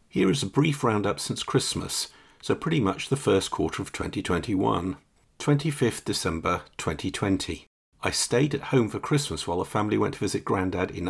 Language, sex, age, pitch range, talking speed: English, male, 50-69, 95-135 Hz, 175 wpm